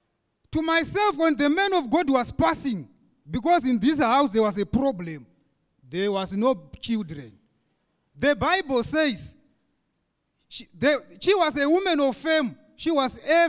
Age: 30-49